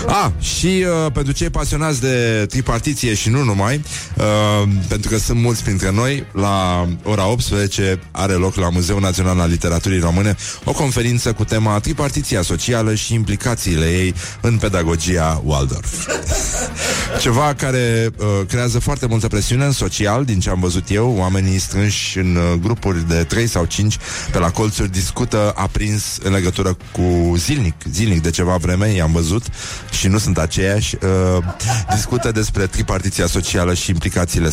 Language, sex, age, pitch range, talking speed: Romanian, male, 30-49, 90-115 Hz, 155 wpm